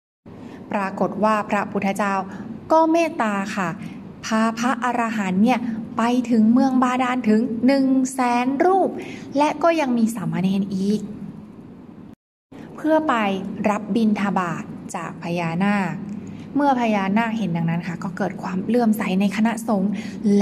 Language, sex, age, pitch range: Thai, female, 20-39, 205-250 Hz